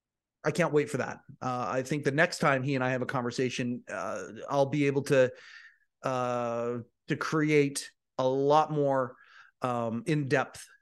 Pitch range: 135-185 Hz